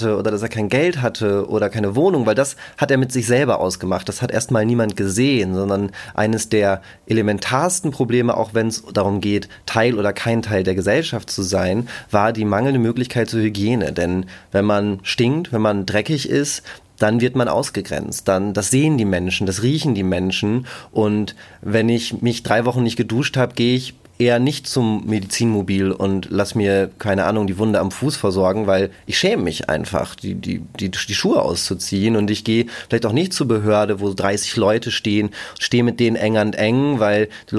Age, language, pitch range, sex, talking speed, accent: 30-49, German, 100-125 Hz, male, 195 wpm, German